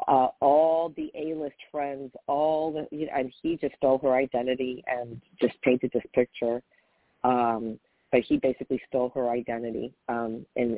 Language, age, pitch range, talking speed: English, 40-59, 115-135 Hz, 160 wpm